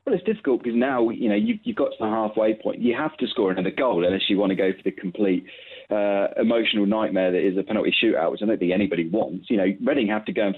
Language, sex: English, male